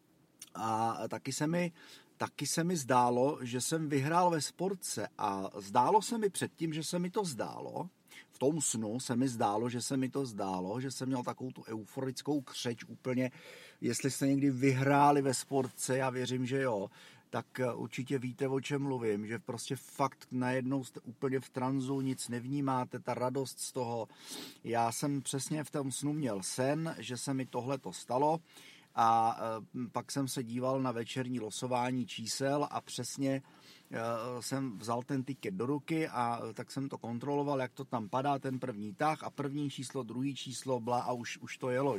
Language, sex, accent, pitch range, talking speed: Czech, male, native, 125-145 Hz, 175 wpm